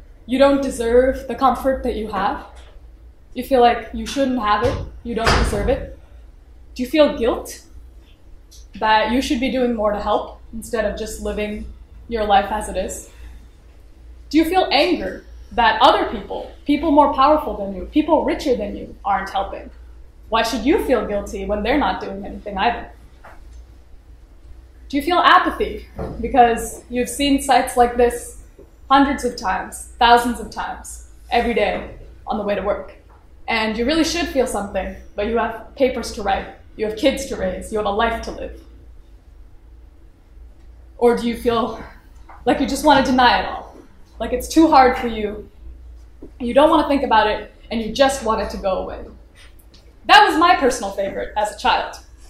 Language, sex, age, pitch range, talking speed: English, female, 20-39, 185-260 Hz, 180 wpm